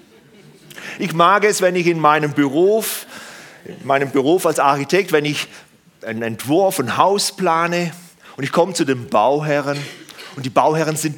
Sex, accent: male, German